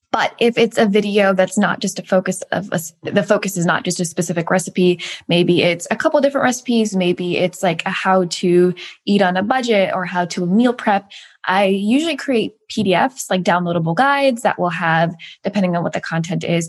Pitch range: 170-205 Hz